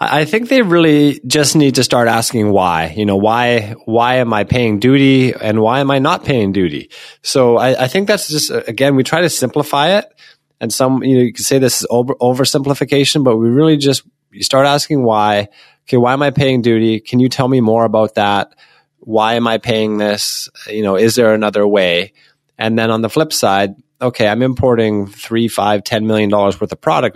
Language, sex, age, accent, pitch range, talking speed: English, male, 20-39, American, 105-140 Hz, 215 wpm